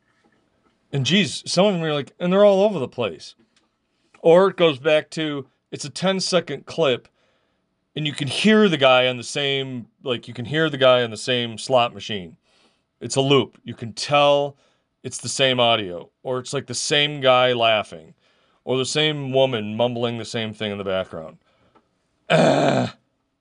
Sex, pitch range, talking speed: male, 110-150 Hz, 185 wpm